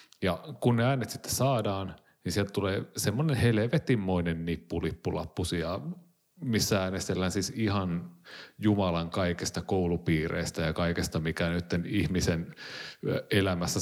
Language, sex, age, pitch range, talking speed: Finnish, male, 30-49, 90-115 Hz, 110 wpm